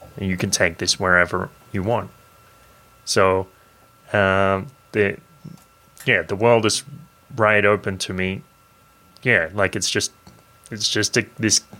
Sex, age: male, 20-39